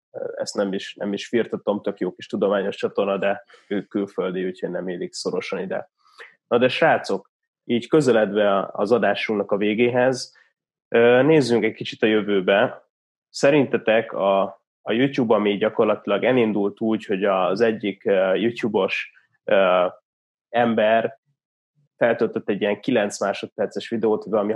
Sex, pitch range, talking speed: male, 100-130 Hz, 130 wpm